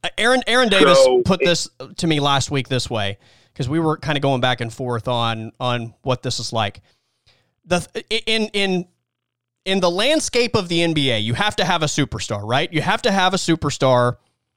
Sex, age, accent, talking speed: male, 30-49, American, 200 wpm